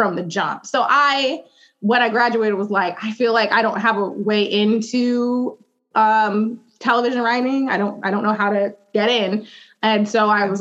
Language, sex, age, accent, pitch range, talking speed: English, female, 20-39, American, 190-235 Hz, 200 wpm